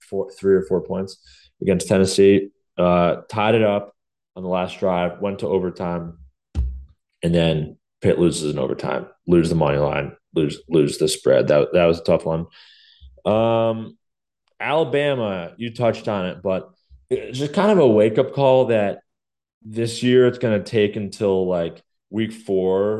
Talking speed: 165 wpm